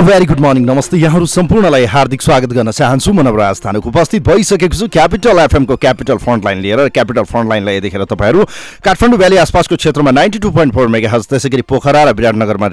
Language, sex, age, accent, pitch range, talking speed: English, male, 30-49, Indian, 120-180 Hz, 175 wpm